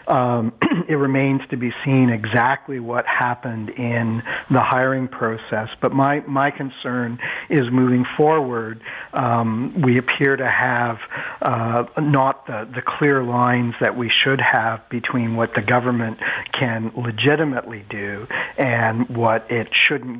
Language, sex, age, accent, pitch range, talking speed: English, male, 50-69, American, 110-130 Hz, 135 wpm